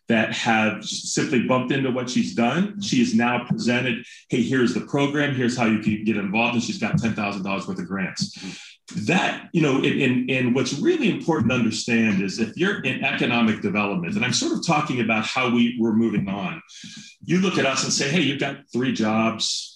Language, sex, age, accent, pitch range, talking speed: English, male, 40-59, American, 110-150 Hz, 205 wpm